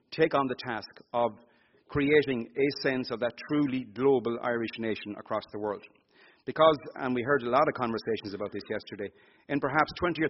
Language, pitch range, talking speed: English, 115-145 Hz, 185 wpm